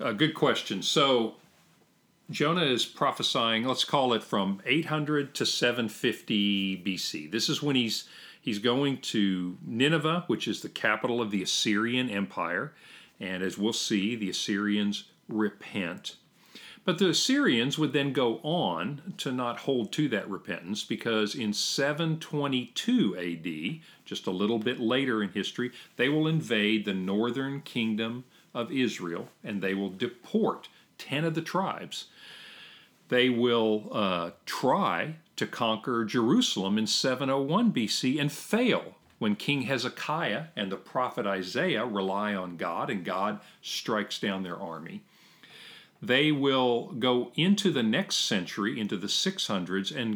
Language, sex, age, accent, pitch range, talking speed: English, male, 50-69, American, 105-155 Hz, 140 wpm